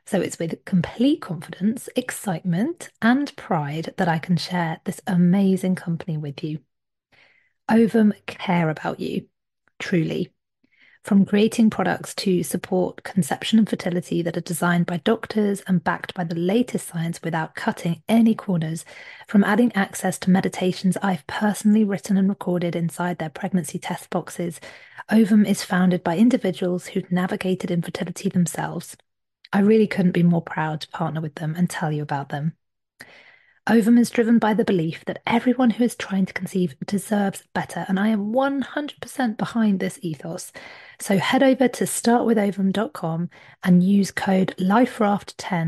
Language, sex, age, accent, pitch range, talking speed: English, female, 30-49, British, 175-215 Hz, 150 wpm